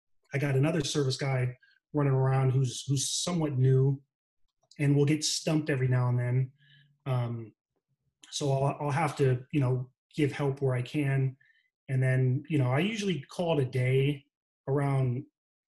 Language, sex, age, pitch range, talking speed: English, male, 30-49, 130-150 Hz, 165 wpm